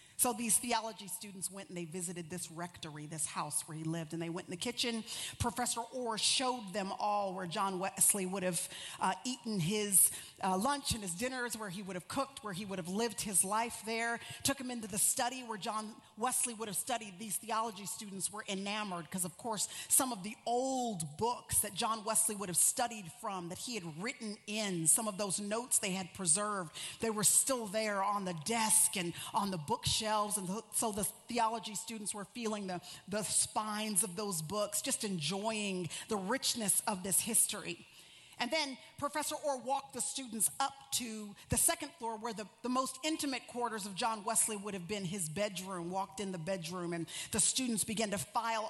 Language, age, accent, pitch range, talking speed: English, 40-59, American, 195-240 Hz, 200 wpm